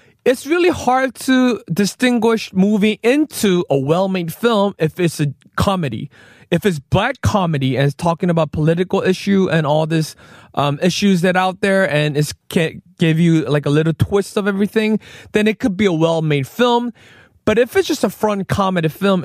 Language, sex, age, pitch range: Korean, male, 20-39, 160-220 Hz